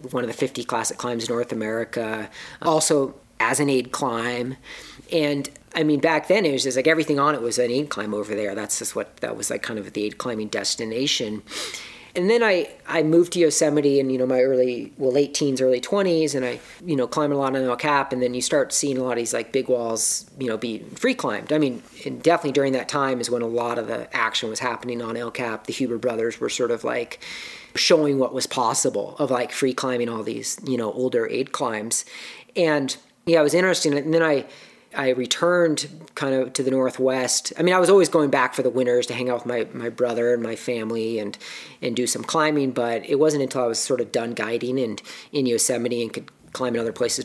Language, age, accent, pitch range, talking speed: English, 40-59, American, 120-150 Hz, 240 wpm